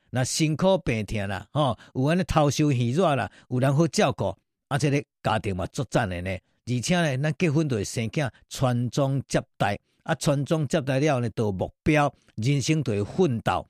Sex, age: male, 50-69